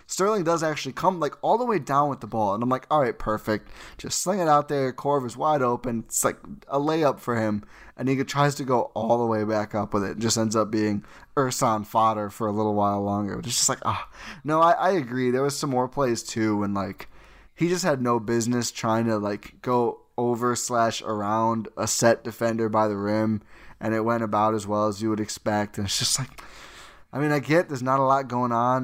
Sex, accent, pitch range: male, American, 105-135 Hz